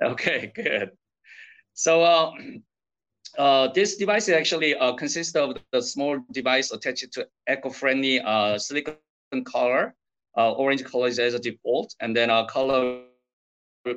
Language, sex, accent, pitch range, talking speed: English, male, Chinese, 120-155 Hz, 135 wpm